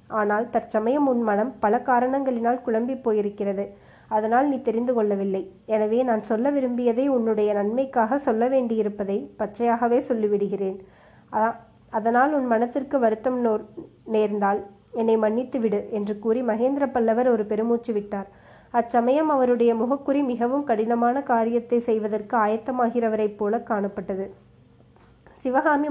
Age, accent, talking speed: 20-39, native, 110 wpm